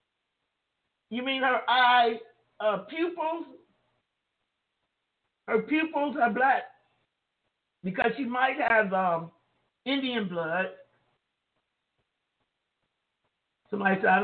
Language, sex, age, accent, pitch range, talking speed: English, male, 50-69, American, 195-250 Hz, 80 wpm